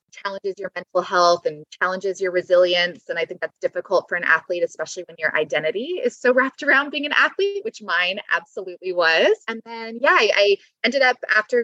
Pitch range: 175-265 Hz